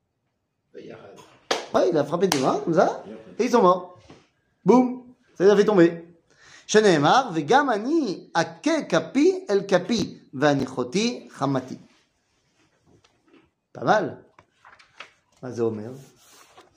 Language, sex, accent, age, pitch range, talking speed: French, male, French, 30-49, 135-185 Hz, 100 wpm